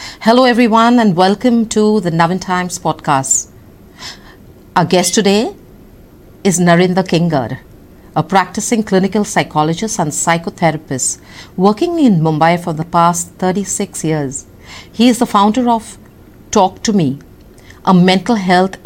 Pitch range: 160-210 Hz